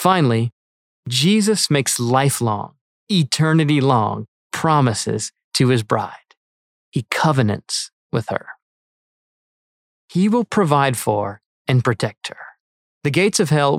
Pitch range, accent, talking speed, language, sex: 120-165 Hz, American, 105 wpm, English, male